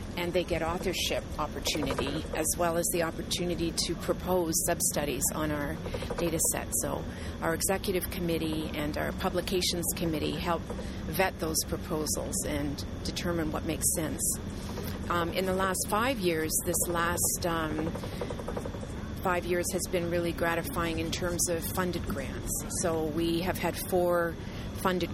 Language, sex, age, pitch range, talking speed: English, female, 40-59, 155-180 Hz, 145 wpm